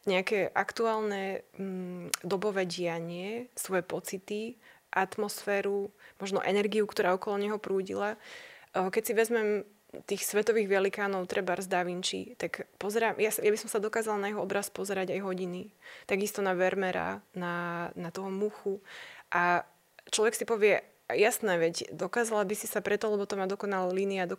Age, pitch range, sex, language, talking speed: 20-39, 185-215 Hz, female, Slovak, 150 wpm